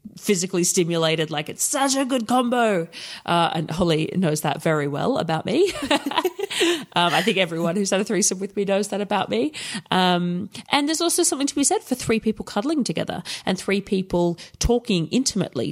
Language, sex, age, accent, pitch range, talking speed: English, female, 30-49, Australian, 165-220 Hz, 185 wpm